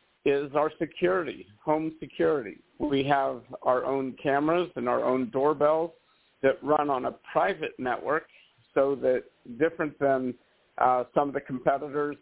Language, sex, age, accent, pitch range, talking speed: English, male, 50-69, American, 125-145 Hz, 140 wpm